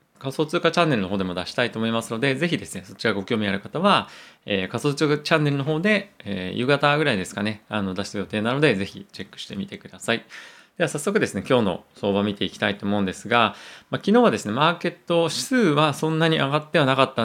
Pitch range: 100-160 Hz